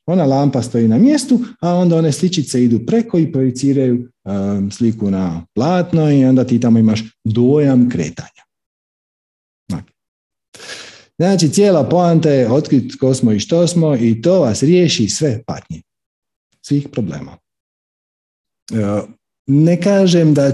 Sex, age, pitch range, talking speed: male, 50-69, 115-160 Hz, 130 wpm